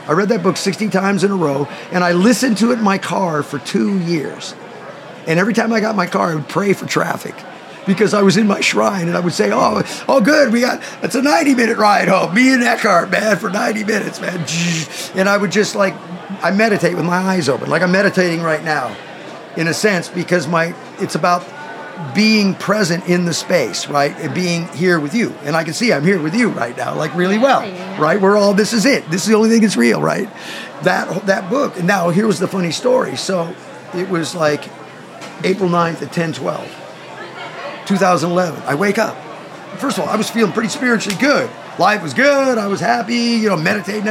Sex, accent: male, American